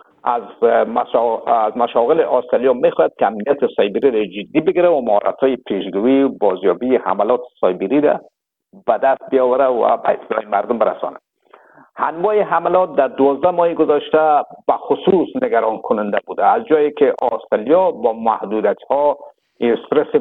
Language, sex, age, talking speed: Persian, male, 50-69, 130 wpm